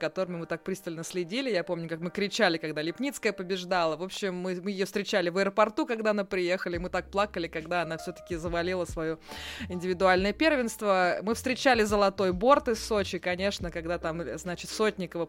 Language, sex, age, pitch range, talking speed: Russian, female, 20-39, 170-210 Hz, 175 wpm